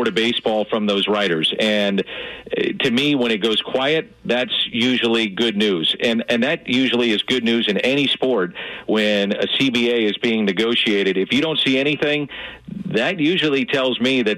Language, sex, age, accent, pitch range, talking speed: English, male, 50-69, American, 110-130 Hz, 175 wpm